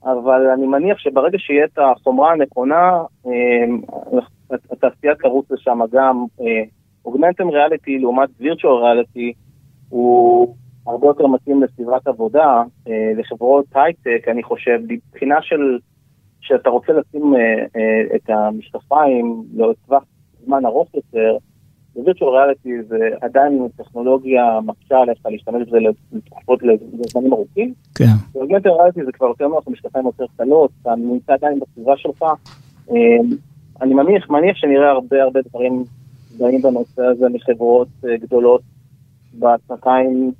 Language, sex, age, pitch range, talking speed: Hebrew, male, 30-49, 120-145 Hz, 115 wpm